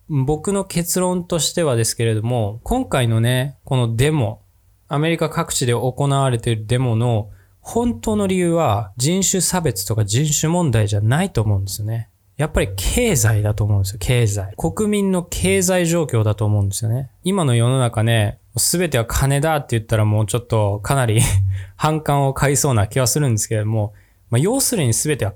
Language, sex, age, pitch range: Japanese, male, 20-39, 110-155 Hz